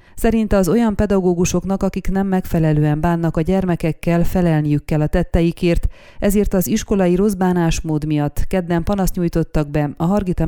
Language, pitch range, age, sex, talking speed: Hungarian, 160-190 Hz, 30-49, female, 145 wpm